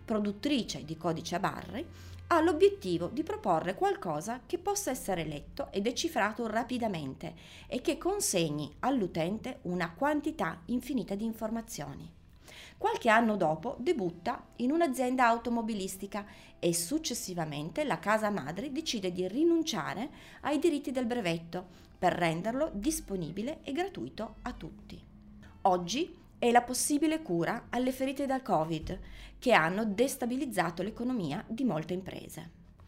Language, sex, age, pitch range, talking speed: Italian, female, 30-49, 175-265 Hz, 125 wpm